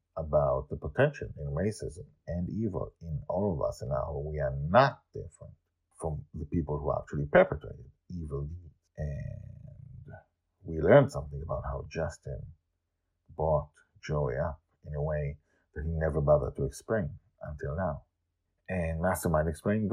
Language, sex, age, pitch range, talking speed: English, male, 50-69, 75-110 Hz, 150 wpm